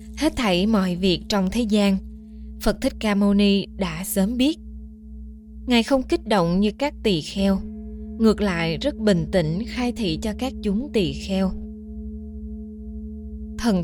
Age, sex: 20-39, female